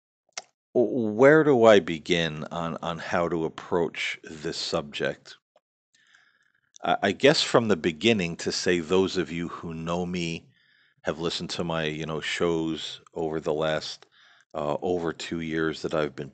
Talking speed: 150 wpm